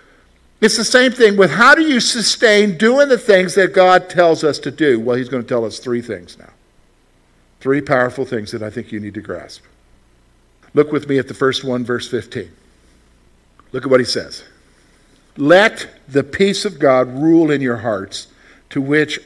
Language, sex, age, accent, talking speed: English, male, 50-69, American, 195 wpm